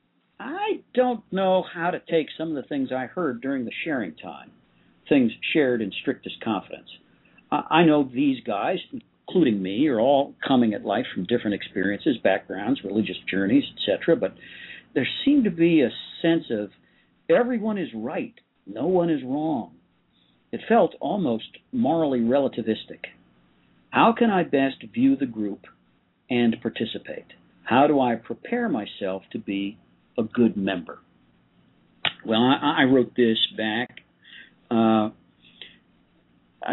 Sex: male